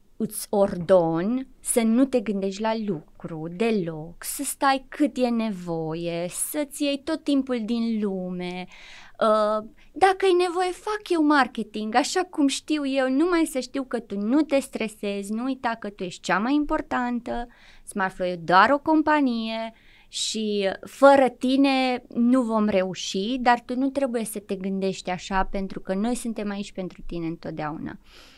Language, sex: Romanian, female